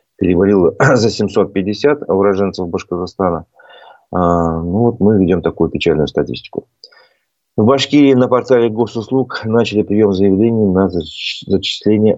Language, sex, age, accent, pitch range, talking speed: Russian, male, 30-49, native, 90-110 Hz, 105 wpm